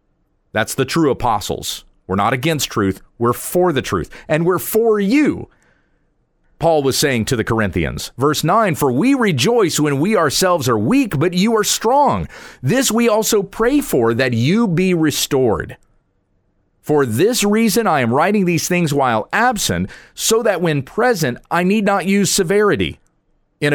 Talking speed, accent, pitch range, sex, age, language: 165 wpm, American, 125-180 Hz, male, 40-59, English